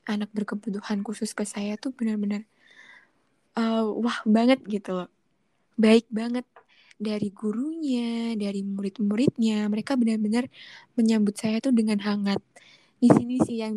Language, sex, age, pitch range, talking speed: Indonesian, female, 10-29, 205-235 Hz, 125 wpm